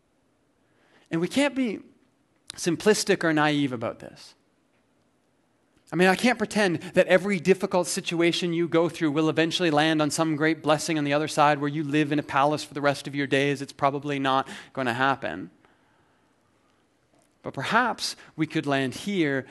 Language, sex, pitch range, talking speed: English, male, 135-165 Hz, 170 wpm